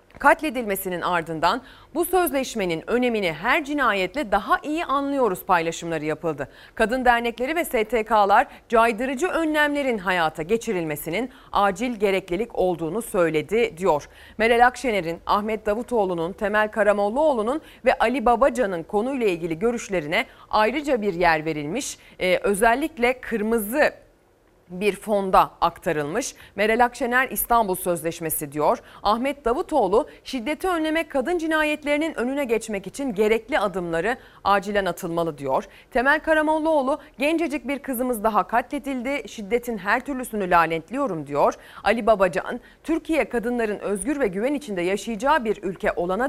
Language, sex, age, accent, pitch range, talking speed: Turkish, female, 30-49, native, 185-260 Hz, 115 wpm